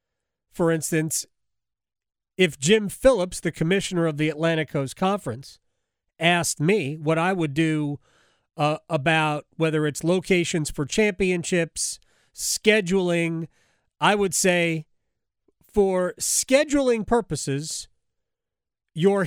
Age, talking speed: 40-59, 105 wpm